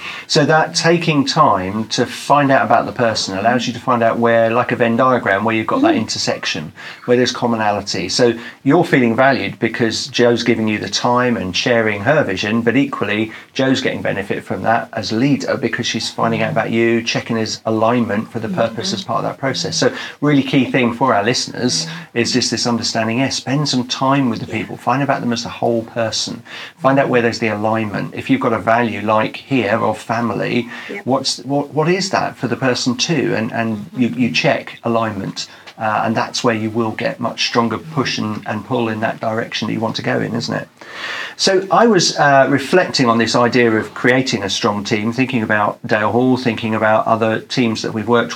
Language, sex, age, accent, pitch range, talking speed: English, male, 40-59, British, 115-130 Hz, 215 wpm